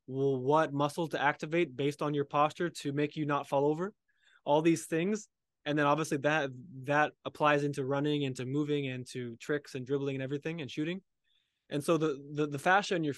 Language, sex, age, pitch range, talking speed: English, male, 20-39, 140-170 Hz, 200 wpm